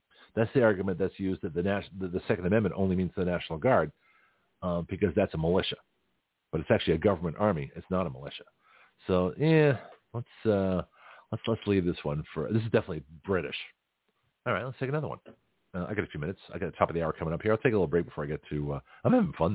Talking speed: 250 wpm